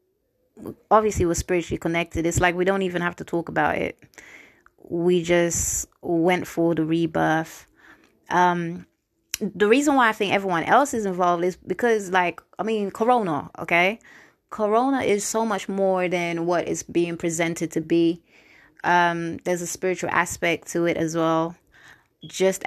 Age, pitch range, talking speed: 20-39, 170-210 Hz, 155 wpm